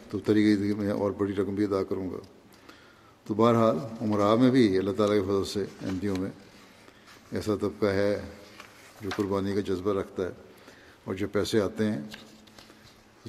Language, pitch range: Urdu, 105-115 Hz